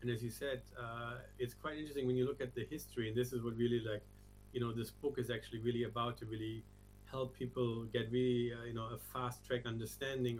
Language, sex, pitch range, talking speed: English, male, 110-125 Hz, 235 wpm